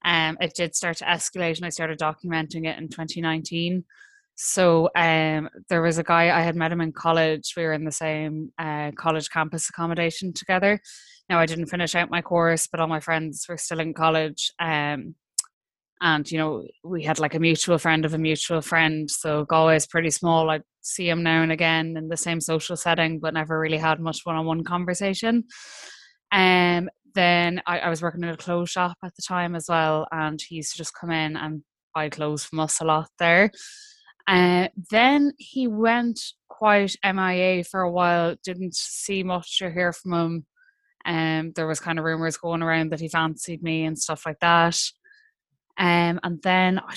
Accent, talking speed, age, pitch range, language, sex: Irish, 195 wpm, 10-29, 160-180 Hz, English, female